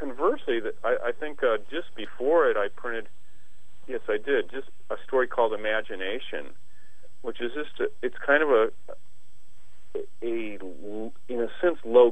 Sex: male